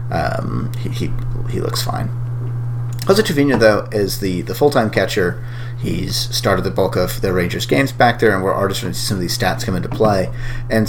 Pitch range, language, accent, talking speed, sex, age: 100-120 Hz, English, American, 205 wpm, male, 30-49